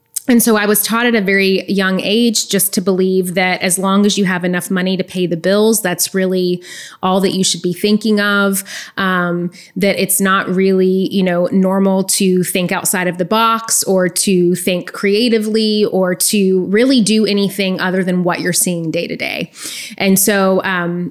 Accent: American